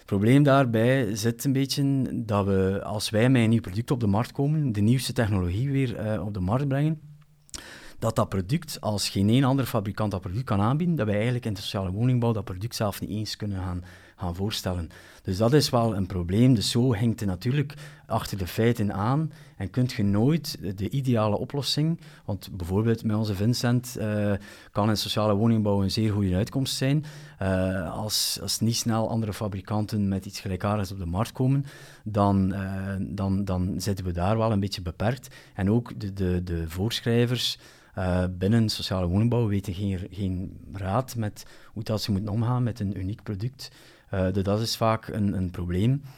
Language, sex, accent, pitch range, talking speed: Dutch, male, Dutch, 100-120 Hz, 195 wpm